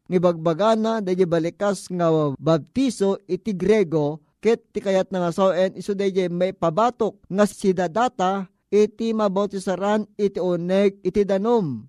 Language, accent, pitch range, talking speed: Filipino, native, 175-215 Hz, 130 wpm